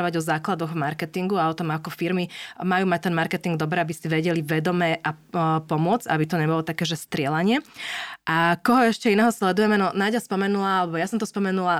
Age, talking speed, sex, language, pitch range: 20-39, 195 wpm, female, Slovak, 165-195 Hz